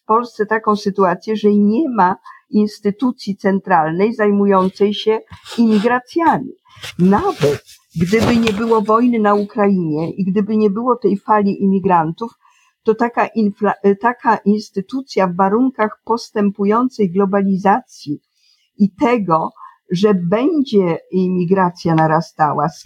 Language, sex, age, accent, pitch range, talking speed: Polish, female, 50-69, native, 195-240 Hz, 110 wpm